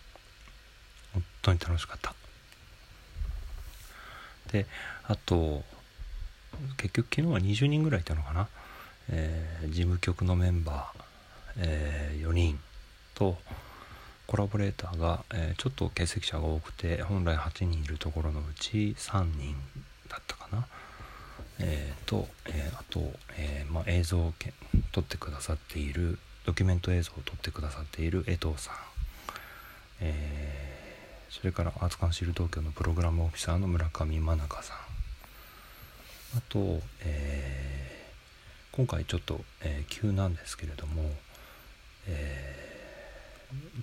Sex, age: male, 40-59